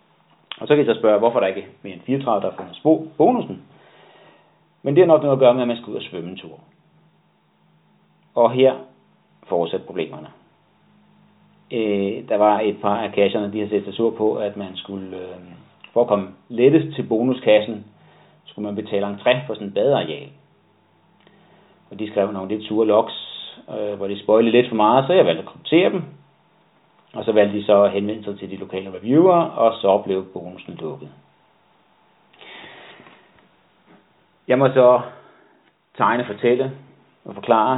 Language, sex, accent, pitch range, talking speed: Danish, male, native, 100-125 Hz, 175 wpm